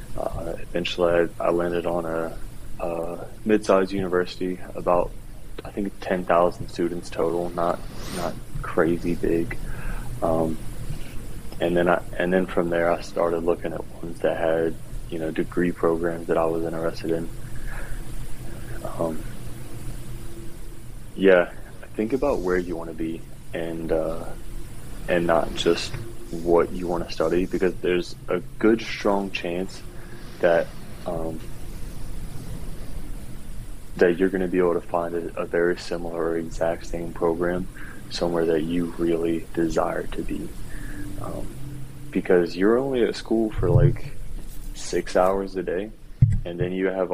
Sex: male